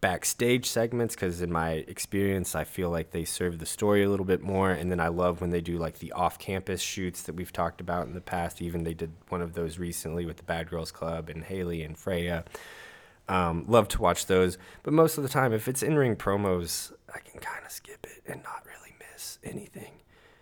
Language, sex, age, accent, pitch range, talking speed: English, male, 20-39, American, 85-95 Hz, 225 wpm